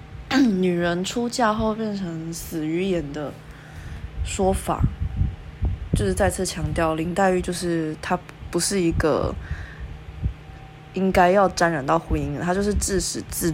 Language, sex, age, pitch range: Chinese, female, 20-39, 140-180 Hz